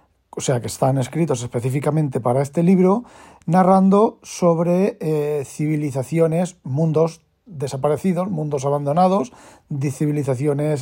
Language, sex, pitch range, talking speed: Spanish, male, 135-165 Hz, 100 wpm